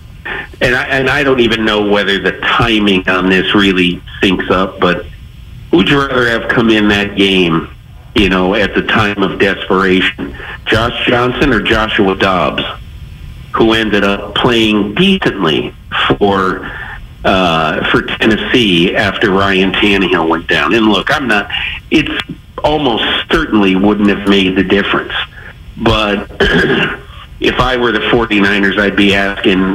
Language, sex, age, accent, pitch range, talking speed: English, male, 50-69, American, 95-110 Hz, 145 wpm